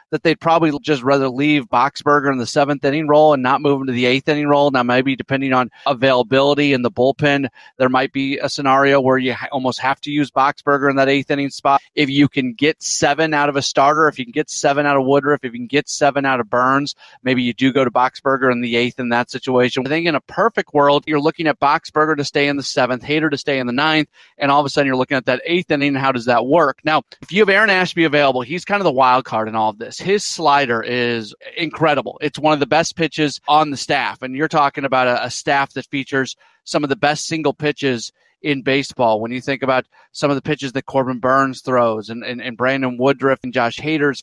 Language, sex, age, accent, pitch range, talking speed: English, male, 30-49, American, 130-150 Hz, 250 wpm